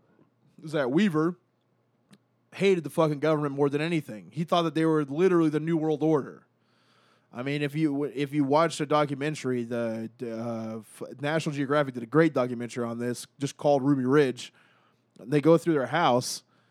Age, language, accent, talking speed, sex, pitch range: 20-39, English, American, 170 wpm, male, 135-160 Hz